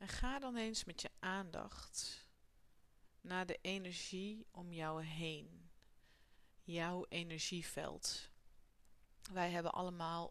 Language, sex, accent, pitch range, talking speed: Dutch, female, Dutch, 160-190 Hz, 105 wpm